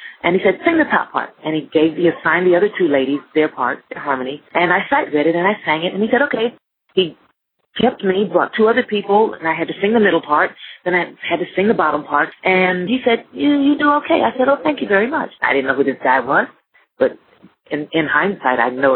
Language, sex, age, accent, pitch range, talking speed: English, female, 40-59, American, 165-225 Hz, 255 wpm